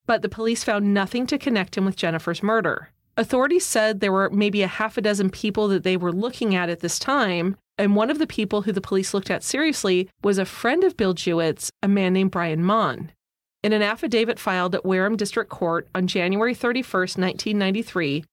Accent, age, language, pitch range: American, 30-49, English, 185-225 Hz